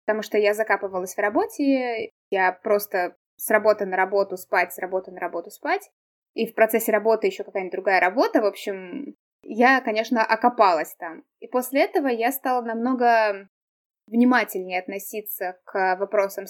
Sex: female